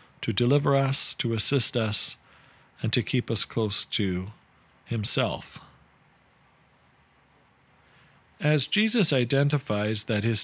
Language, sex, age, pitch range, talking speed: English, male, 50-69, 110-140 Hz, 105 wpm